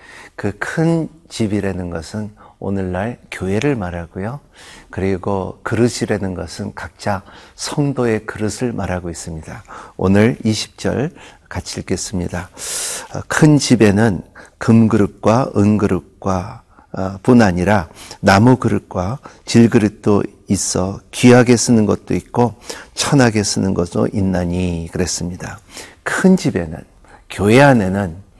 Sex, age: male, 50-69